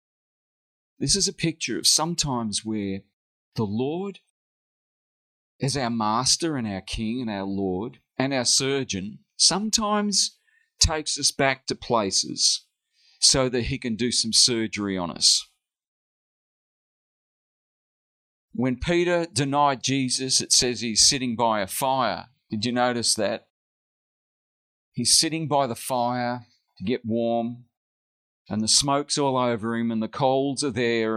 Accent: Australian